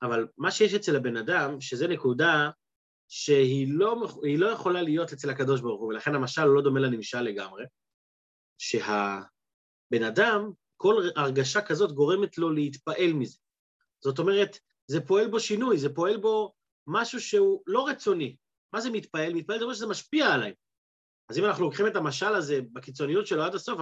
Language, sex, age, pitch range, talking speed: Hebrew, male, 30-49, 145-220 Hz, 165 wpm